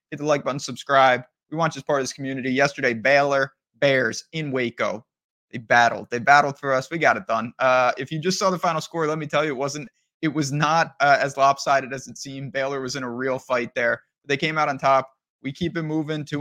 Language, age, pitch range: English, 20-39, 130-150 Hz